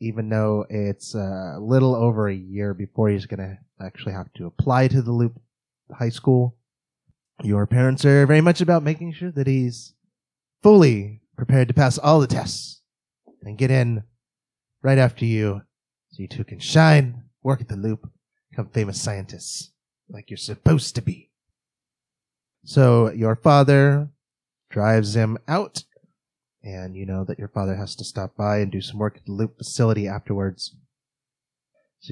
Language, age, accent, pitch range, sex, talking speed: English, 30-49, American, 105-140 Hz, male, 165 wpm